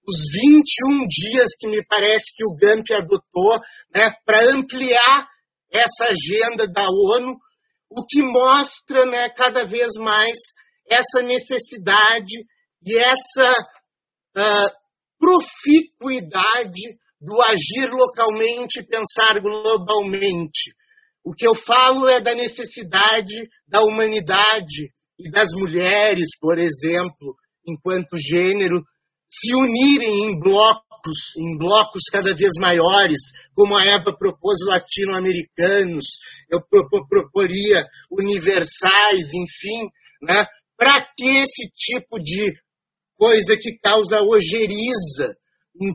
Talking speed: 105 wpm